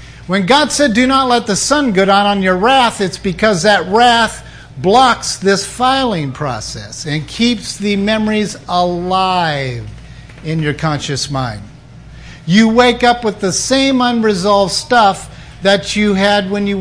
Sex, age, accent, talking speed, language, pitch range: male, 50-69, American, 155 wpm, English, 145-220 Hz